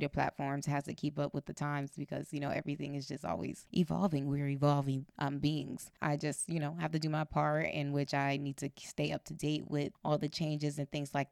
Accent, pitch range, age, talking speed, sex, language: American, 145-160 Hz, 20-39, 240 wpm, female, English